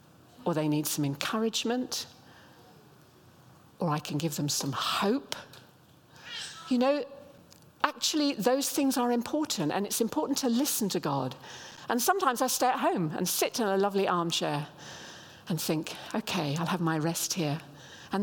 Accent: British